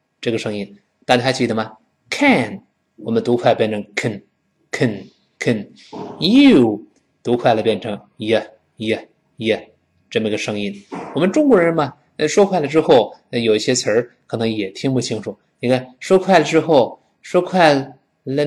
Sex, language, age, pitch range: male, Chinese, 20-39, 115-160 Hz